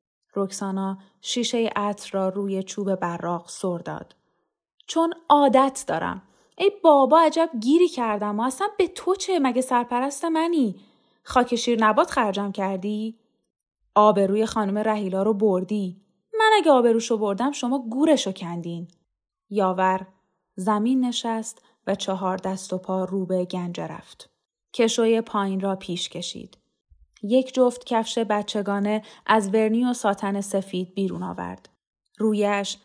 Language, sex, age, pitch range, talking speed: Persian, female, 10-29, 195-240 Hz, 130 wpm